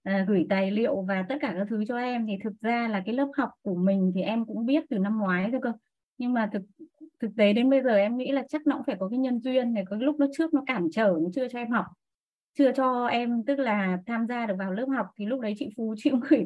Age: 20-39